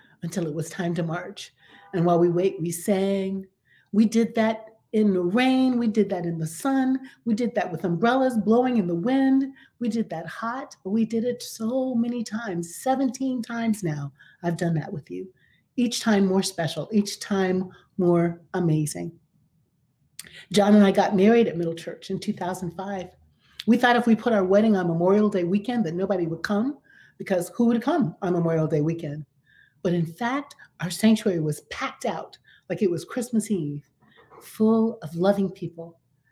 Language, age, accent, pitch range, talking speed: English, 40-59, American, 170-230 Hz, 180 wpm